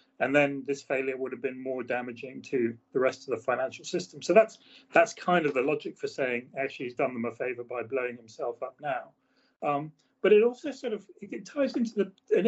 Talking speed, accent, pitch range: 225 wpm, British, 135-185 Hz